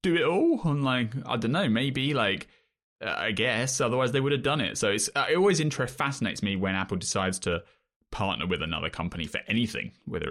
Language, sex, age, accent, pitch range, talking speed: English, male, 20-39, British, 95-130 Hz, 215 wpm